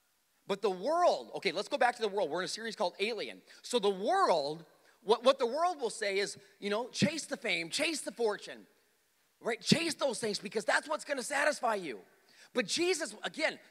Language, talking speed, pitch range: English, 210 wpm, 175-280 Hz